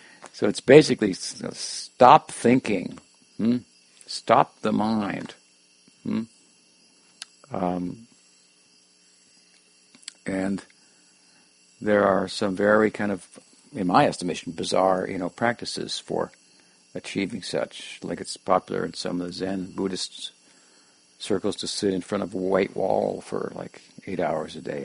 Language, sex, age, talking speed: English, male, 60-79, 130 wpm